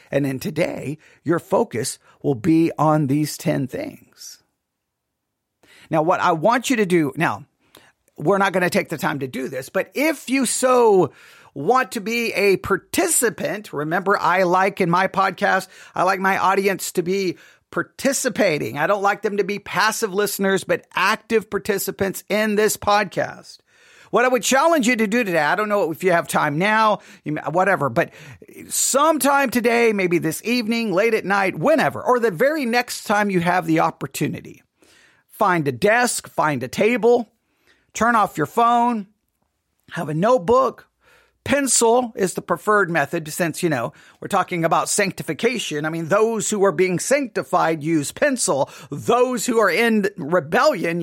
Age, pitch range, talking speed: 40-59, 180-250 Hz, 165 wpm